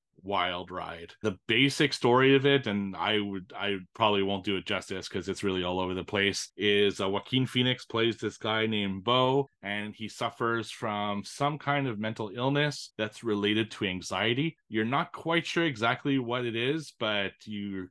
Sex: male